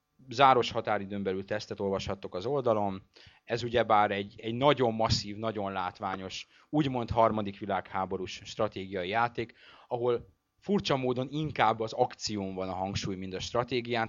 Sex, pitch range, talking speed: male, 95-115 Hz, 135 wpm